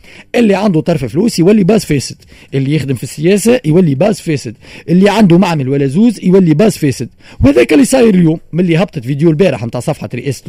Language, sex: Arabic, male